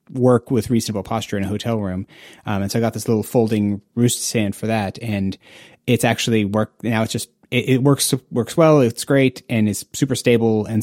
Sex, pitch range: male, 105-130 Hz